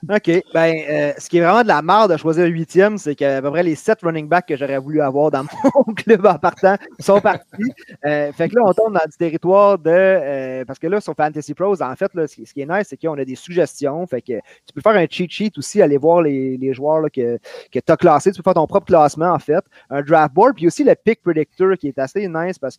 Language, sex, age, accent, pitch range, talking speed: French, male, 30-49, Canadian, 140-175 Hz, 270 wpm